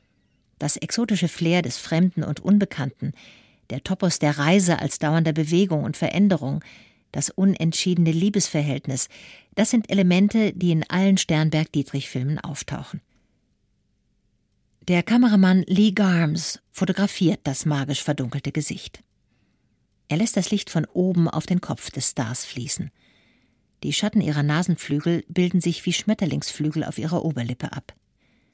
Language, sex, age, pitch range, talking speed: German, female, 50-69, 150-185 Hz, 125 wpm